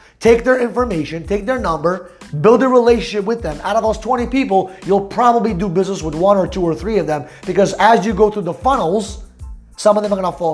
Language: English